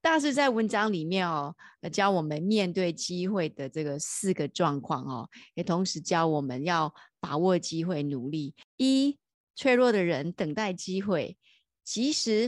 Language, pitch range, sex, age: Chinese, 165-220 Hz, female, 30-49